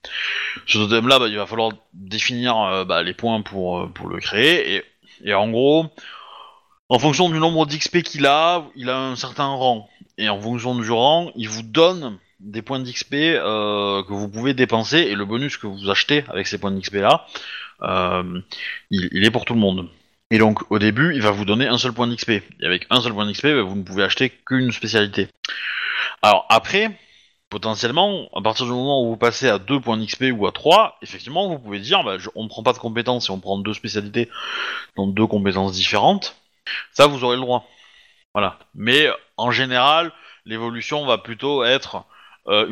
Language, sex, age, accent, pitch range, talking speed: French, male, 20-39, French, 100-130 Hz, 205 wpm